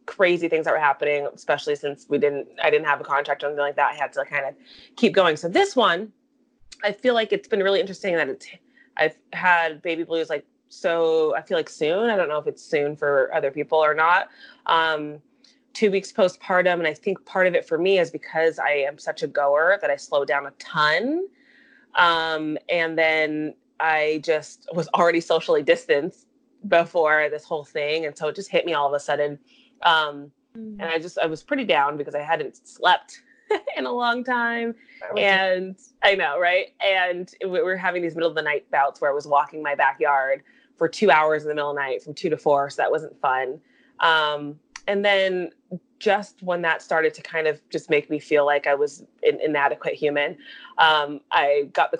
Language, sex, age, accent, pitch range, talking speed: English, female, 20-39, American, 150-200 Hz, 210 wpm